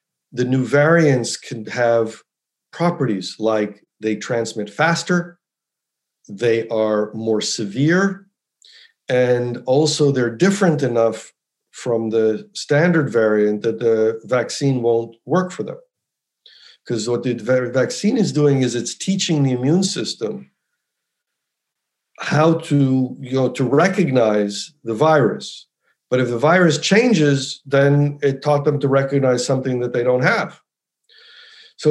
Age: 50-69